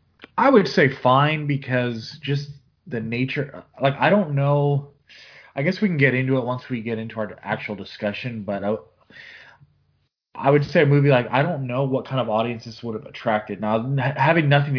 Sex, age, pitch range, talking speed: male, 20-39, 105-135 Hz, 190 wpm